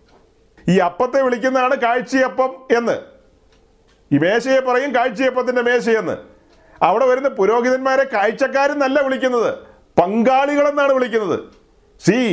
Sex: male